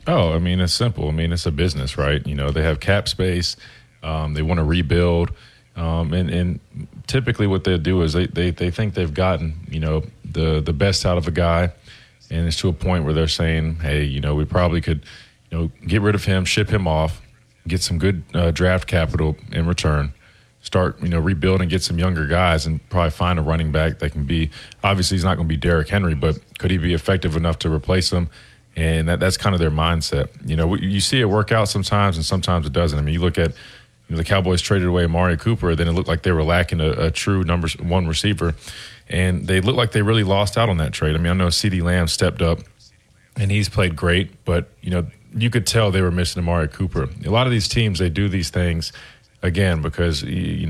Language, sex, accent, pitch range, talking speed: English, male, American, 80-95 Hz, 240 wpm